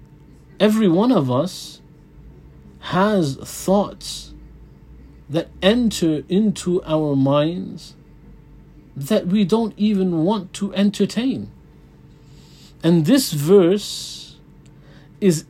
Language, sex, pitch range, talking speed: English, male, 140-185 Hz, 85 wpm